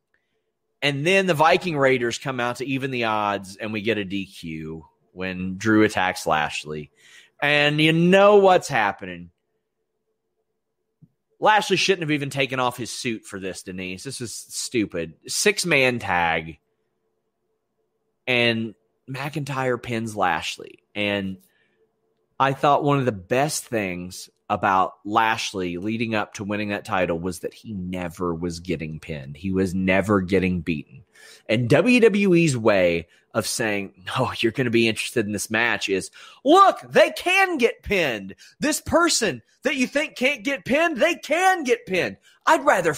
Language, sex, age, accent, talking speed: English, male, 30-49, American, 150 wpm